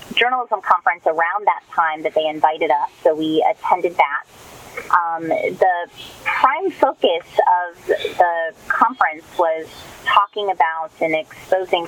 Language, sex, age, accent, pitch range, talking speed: English, female, 30-49, American, 165-255 Hz, 125 wpm